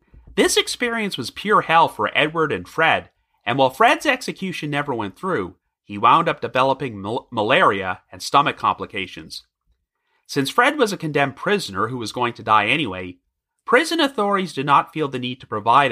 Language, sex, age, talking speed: English, male, 30-49, 170 wpm